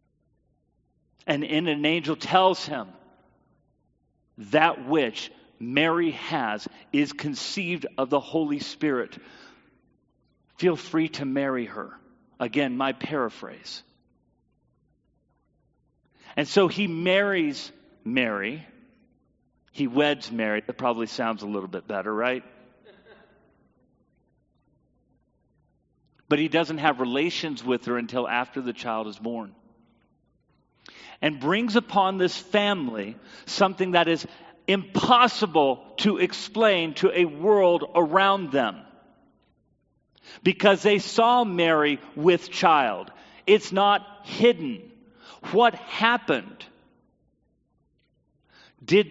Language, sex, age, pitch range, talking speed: English, male, 40-59, 145-200 Hz, 100 wpm